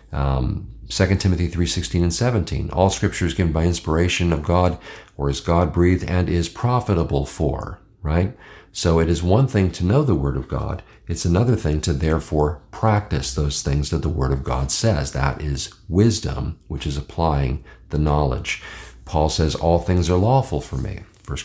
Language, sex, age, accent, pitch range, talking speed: English, male, 50-69, American, 75-100 Hz, 185 wpm